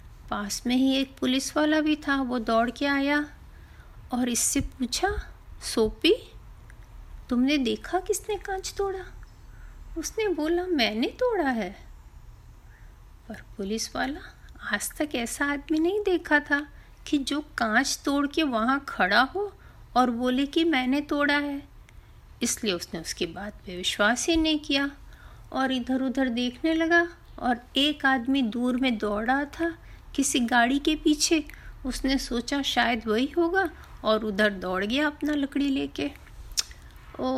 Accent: native